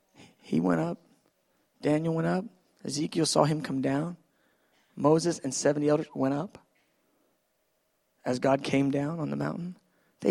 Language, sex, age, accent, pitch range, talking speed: English, male, 40-59, American, 140-180 Hz, 145 wpm